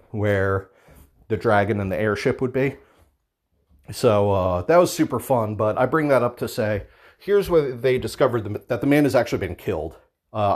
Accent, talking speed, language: American, 190 wpm, English